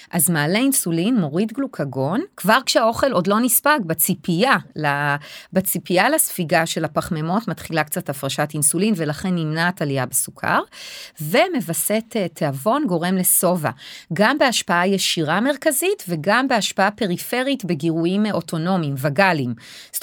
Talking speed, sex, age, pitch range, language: 110 wpm, female, 30-49, 155-200 Hz, Hebrew